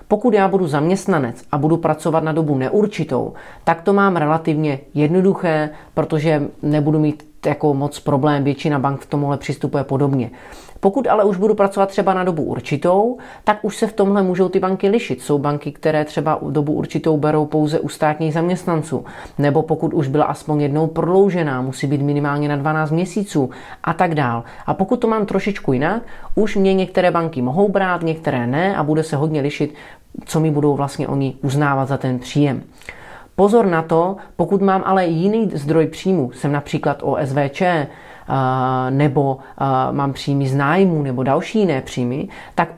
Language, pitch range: Czech, 145-185 Hz